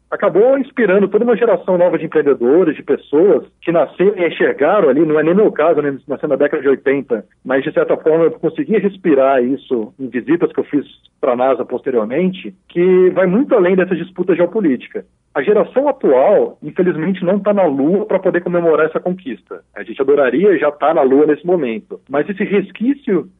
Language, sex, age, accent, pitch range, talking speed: Portuguese, male, 40-59, Brazilian, 145-220 Hz, 190 wpm